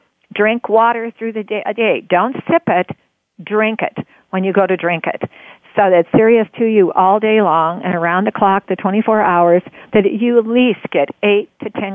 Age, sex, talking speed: 50-69, female, 205 wpm